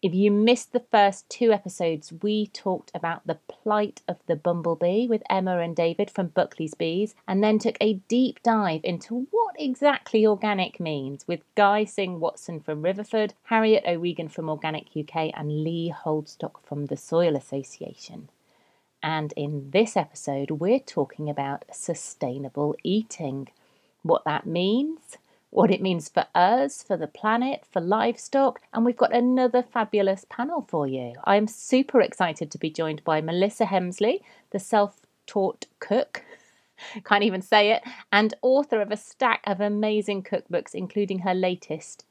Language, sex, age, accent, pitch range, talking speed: English, female, 40-59, British, 165-215 Hz, 155 wpm